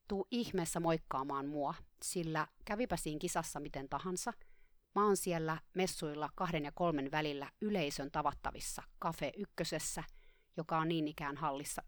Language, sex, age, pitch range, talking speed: Finnish, female, 30-49, 155-185 Hz, 135 wpm